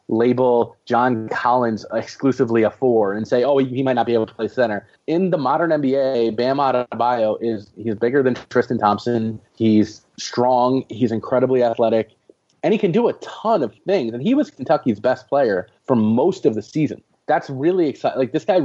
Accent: American